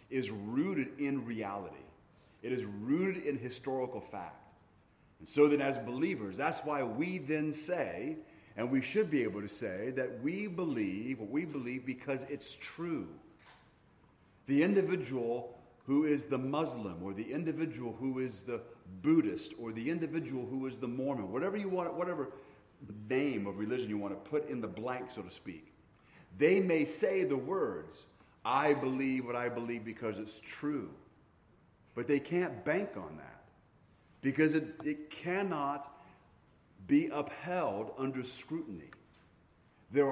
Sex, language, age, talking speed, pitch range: male, English, 40-59, 150 wpm, 115-155 Hz